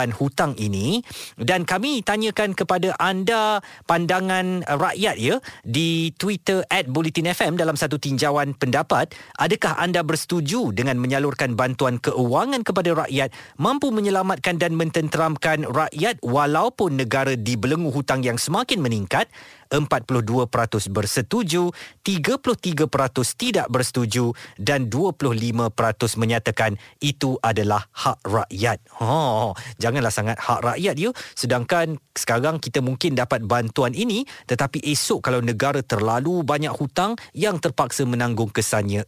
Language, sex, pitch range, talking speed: Malay, male, 120-170 Hz, 115 wpm